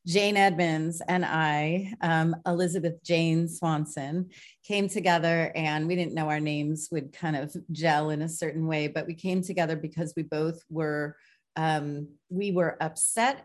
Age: 30-49